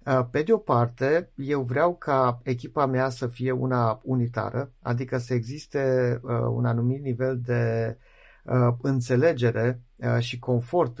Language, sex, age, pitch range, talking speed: Romanian, male, 50-69, 120-140 Hz, 120 wpm